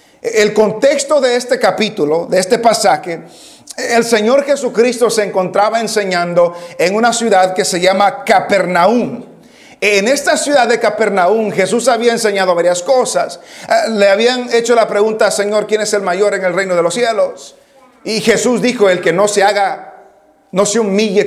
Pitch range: 195-250 Hz